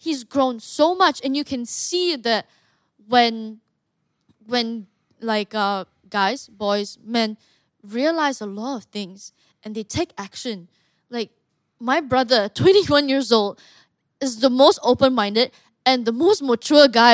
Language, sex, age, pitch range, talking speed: English, female, 10-29, 220-280 Hz, 140 wpm